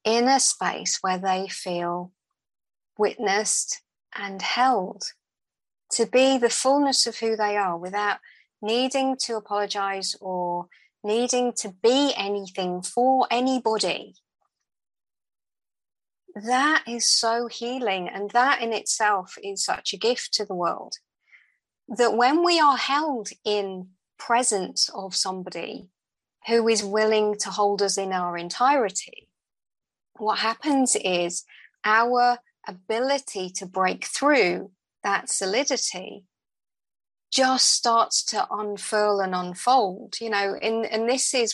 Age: 30-49